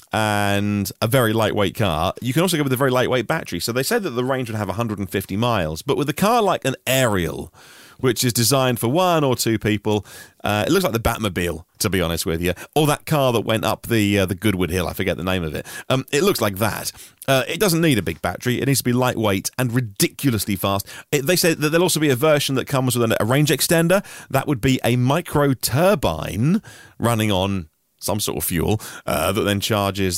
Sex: male